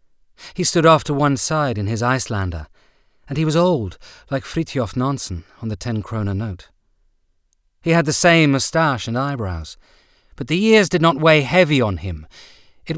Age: 40-59